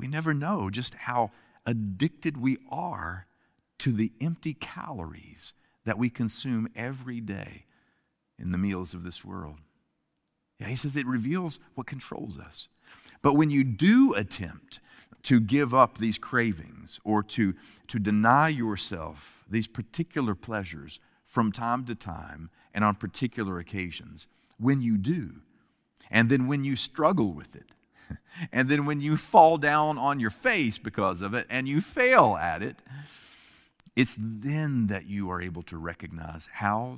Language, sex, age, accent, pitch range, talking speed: English, male, 50-69, American, 95-130 Hz, 150 wpm